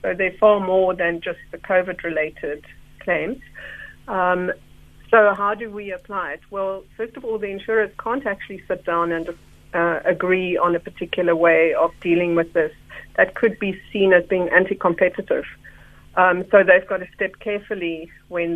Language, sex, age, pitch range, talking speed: English, female, 50-69, 175-200 Hz, 165 wpm